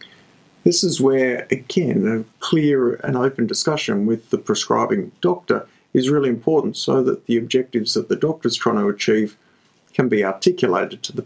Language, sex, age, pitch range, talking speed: English, male, 50-69, 120-170 Hz, 165 wpm